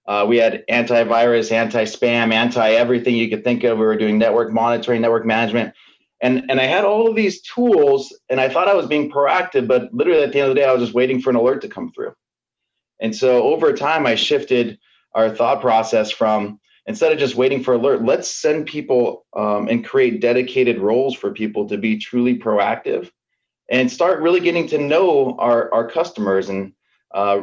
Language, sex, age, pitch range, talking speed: English, male, 30-49, 110-160 Hz, 200 wpm